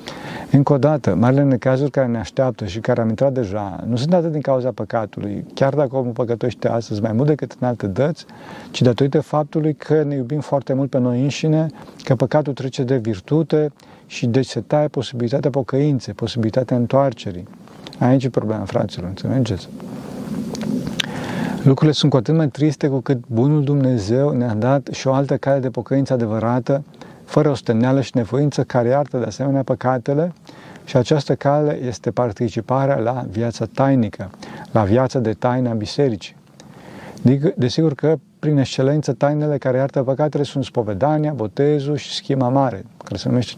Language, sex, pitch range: Romanian, male, 120-145 Hz